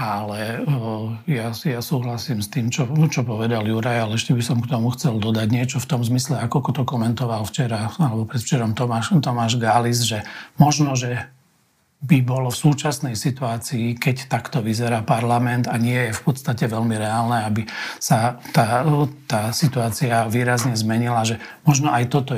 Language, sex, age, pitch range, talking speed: Slovak, male, 40-59, 115-135 Hz, 170 wpm